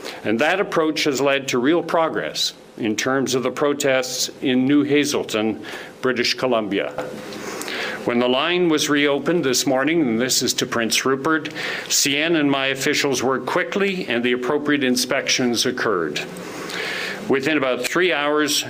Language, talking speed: English, 150 wpm